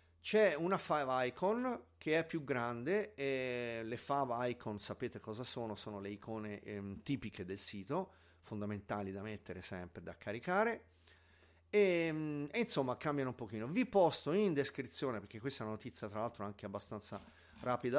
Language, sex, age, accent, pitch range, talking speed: Italian, male, 40-59, native, 105-145 Hz, 165 wpm